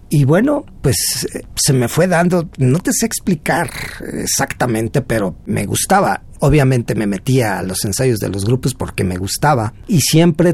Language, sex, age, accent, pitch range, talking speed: Spanish, male, 40-59, Mexican, 110-145 Hz, 165 wpm